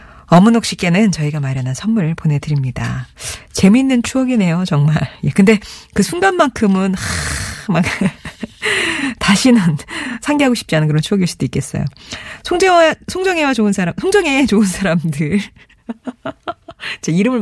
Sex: female